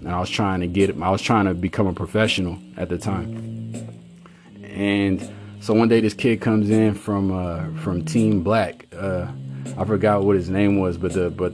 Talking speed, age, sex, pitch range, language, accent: 205 wpm, 30-49, male, 90-105 Hz, English, American